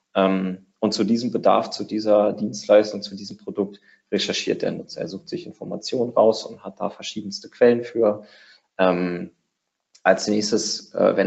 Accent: German